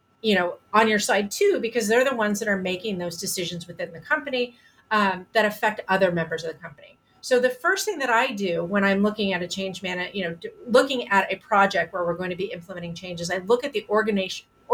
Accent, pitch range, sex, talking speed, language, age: American, 190-245 Hz, female, 240 wpm, English, 30-49